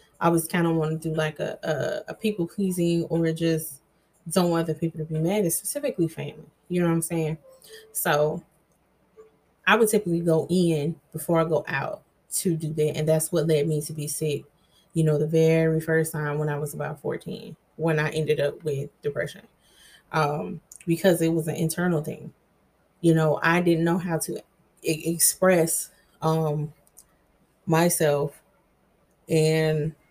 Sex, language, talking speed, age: female, English, 170 wpm, 20-39